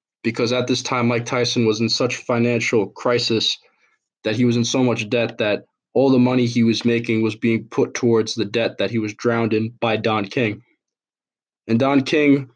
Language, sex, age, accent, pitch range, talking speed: English, male, 20-39, American, 110-120 Hz, 200 wpm